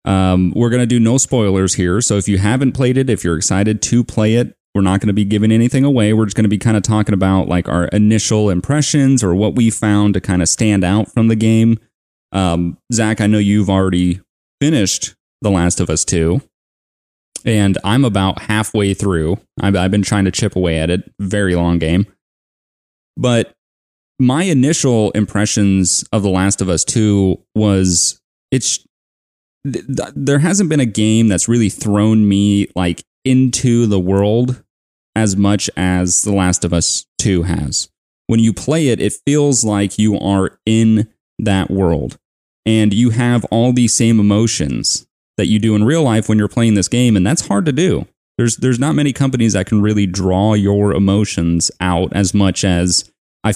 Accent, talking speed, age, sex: American, 190 wpm, 30-49, male